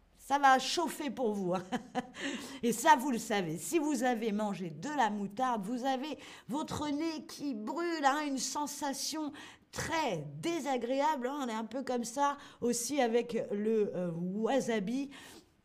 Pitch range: 220-280 Hz